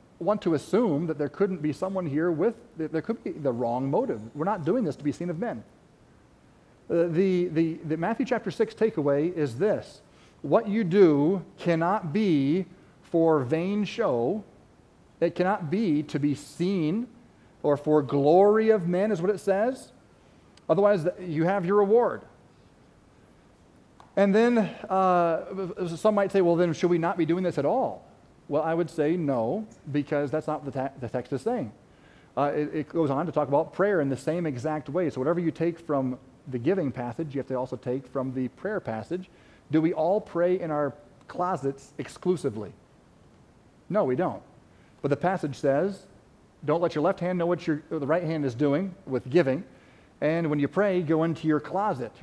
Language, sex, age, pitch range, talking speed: English, male, 40-59, 145-190 Hz, 185 wpm